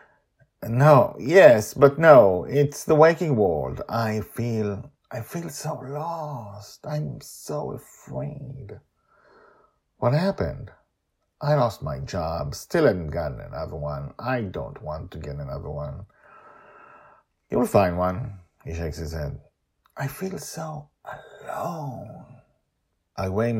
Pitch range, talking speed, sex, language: 90-150 Hz, 120 wpm, male, English